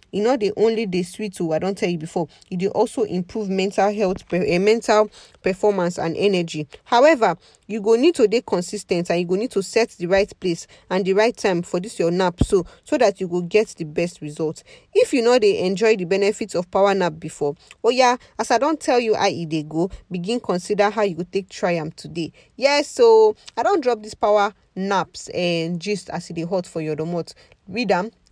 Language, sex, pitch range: English, female, 175-225 Hz